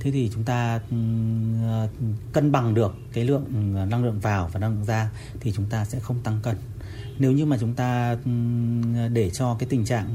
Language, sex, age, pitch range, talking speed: Vietnamese, male, 30-49, 110-125 Hz, 190 wpm